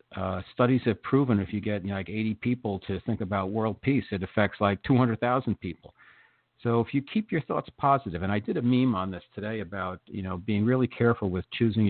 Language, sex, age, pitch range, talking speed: English, male, 50-69, 95-115 Hz, 215 wpm